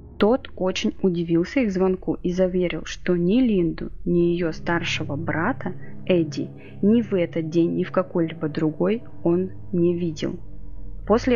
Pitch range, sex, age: 165-200 Hz, female, 20-39